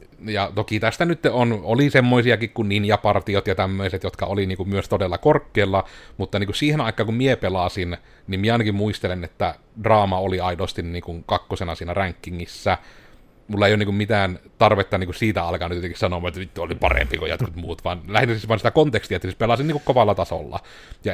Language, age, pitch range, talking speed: Finnish, 30-49, 95-115 Hz, 190 wpm